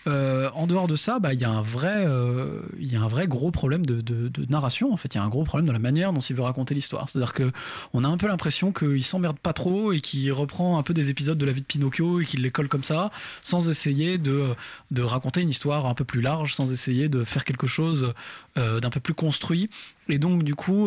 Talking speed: 255 wpm